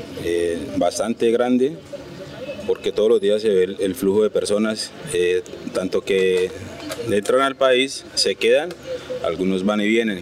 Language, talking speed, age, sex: Spanish, 155 wpm, 30-49, male